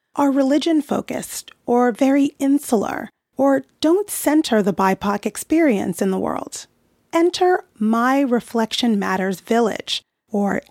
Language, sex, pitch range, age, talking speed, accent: English, female, 230-305 Hz, 30-49, 120 wpm, American